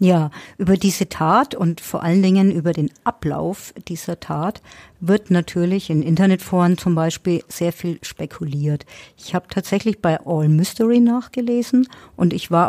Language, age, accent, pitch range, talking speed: German, 50-69, German, 165-210 Hz, 150 wpm